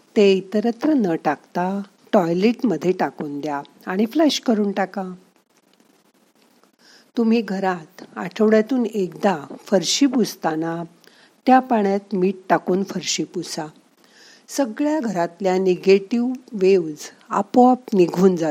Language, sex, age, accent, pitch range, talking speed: Marathi, female, 50-69, native, 180-235 Hz, 40 wpm